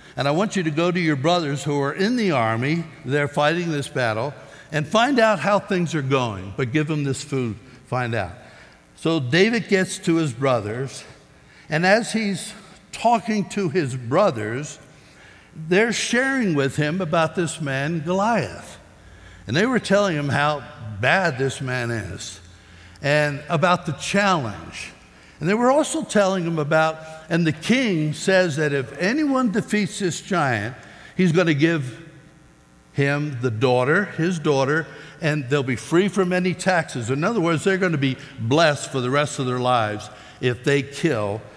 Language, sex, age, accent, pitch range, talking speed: English, male, 60-79, American, 125-185 Hz, 165 wpm